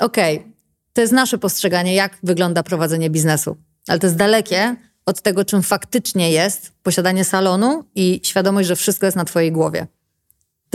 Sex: female